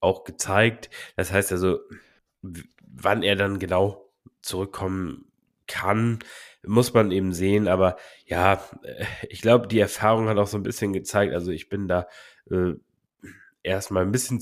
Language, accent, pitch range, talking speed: German, German, 95-105 Hz, 145 wpm